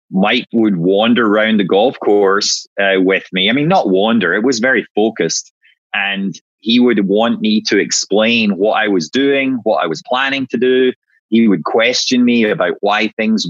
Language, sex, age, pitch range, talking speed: English, male, 30-49, 105-135 Hz, 185 wpm